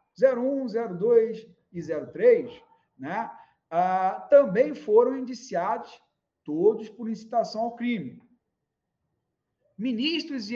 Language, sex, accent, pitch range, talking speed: Portuguese, male, Brazilian, 170-240 Hz, 90 wpm